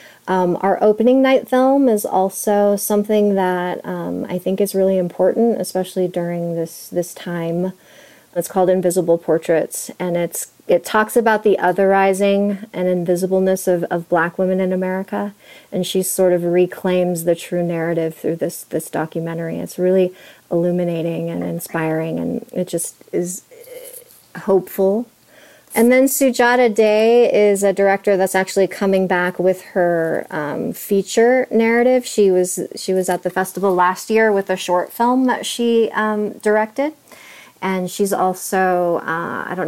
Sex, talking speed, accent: female, 150 wpm, American